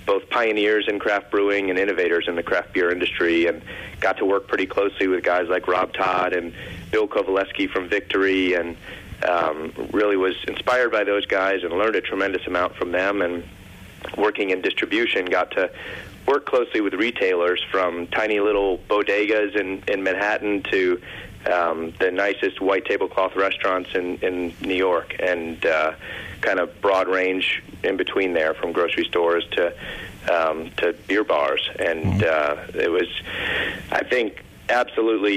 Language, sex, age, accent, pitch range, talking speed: English, male, 30-49, American, 85-105 Hz, 160 wpm